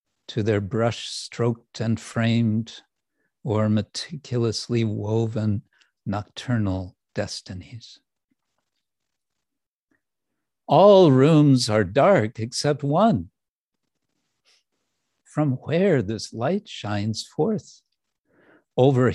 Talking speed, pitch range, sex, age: 75 wpm, 110-135 Hz, male, 60-79